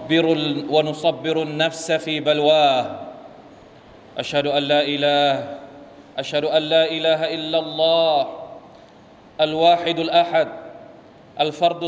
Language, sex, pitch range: Thai, male, 155-170 Hz